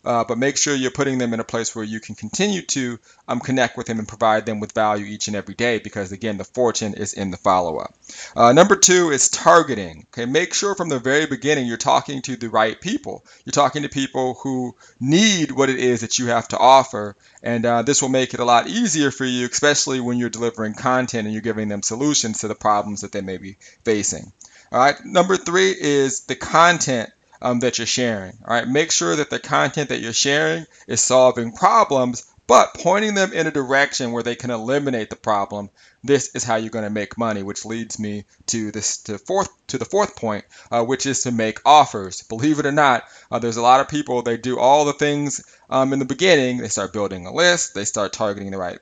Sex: male